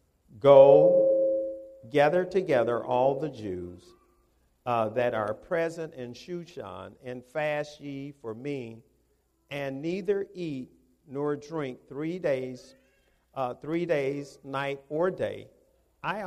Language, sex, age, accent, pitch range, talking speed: English, male, 50-69, American, 115-170 Hz, 105 wpm